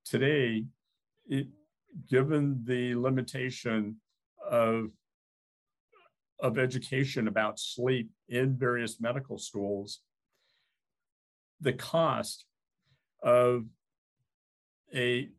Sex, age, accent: male, 50-69, American